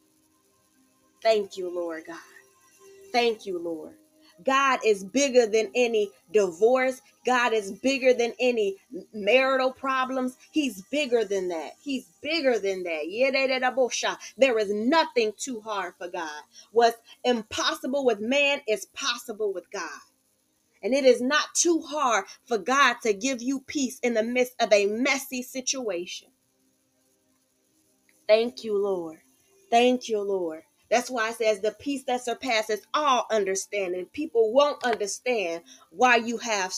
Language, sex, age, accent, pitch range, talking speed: English, female, 20-39, American, 195-255 Hz, 135 wpm